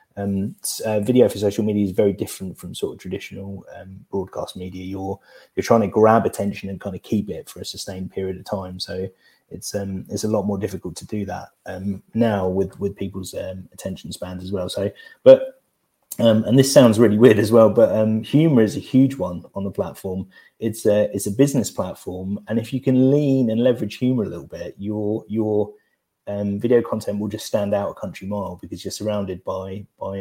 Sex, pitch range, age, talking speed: male, 95-110 Hz, 30-49, 215 wpm